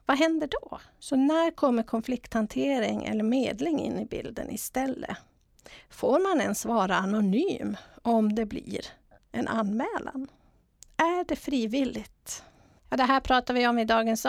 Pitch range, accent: 215-275 Hz, Swedish